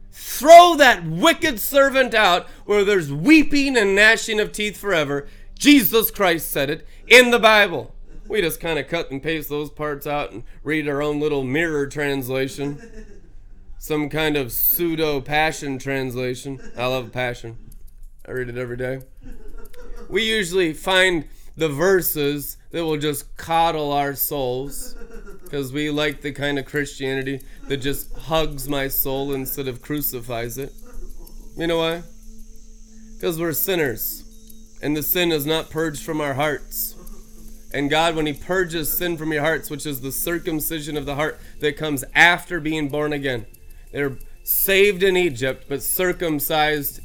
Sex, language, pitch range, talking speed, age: male, English, 135-180 Hz, 155 wpm, 20-39